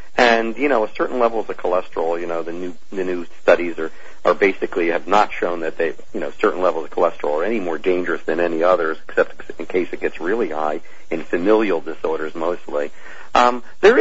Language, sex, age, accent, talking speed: English, male, 50-69, American, 210 wpm